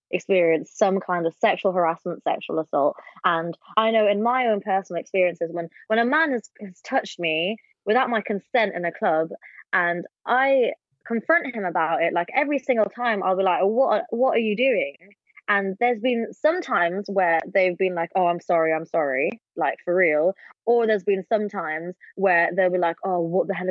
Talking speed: 195 wpm